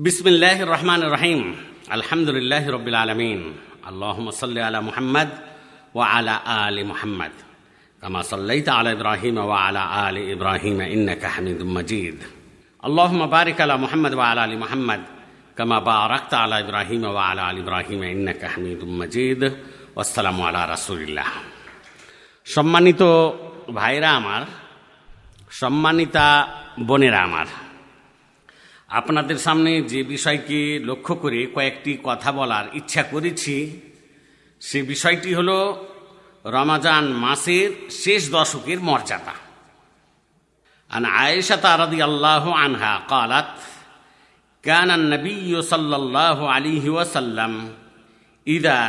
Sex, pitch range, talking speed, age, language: male, 110-160 Hz, 60 wpm, 50-69, Bengali